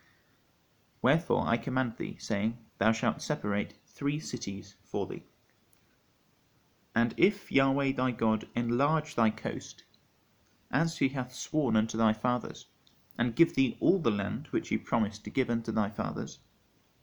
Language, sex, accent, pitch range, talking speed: English, male, British, 110-140 Hz, 145 wpm